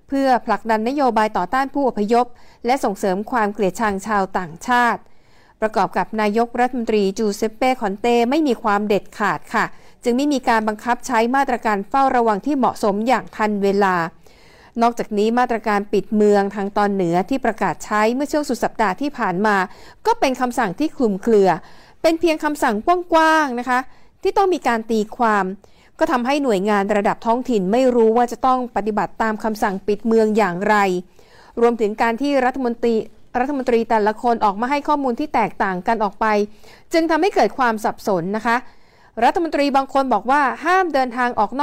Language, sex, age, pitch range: Thai, female, 60-79, 210-275 Hz